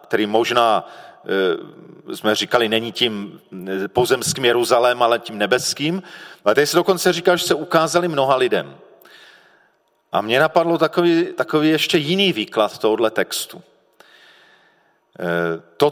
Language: Czech